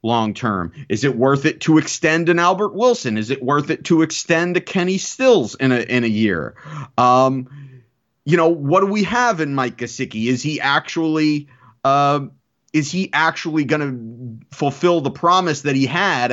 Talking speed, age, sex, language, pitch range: 180 wpm, 30-49, male, English, 125-165 Hz